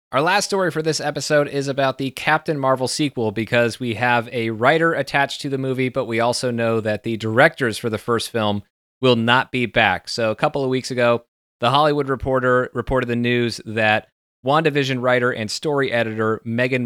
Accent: American